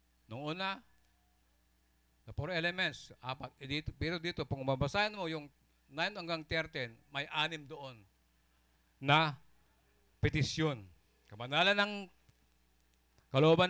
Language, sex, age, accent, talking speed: Filipino, male, 50-69, native, 100 wpm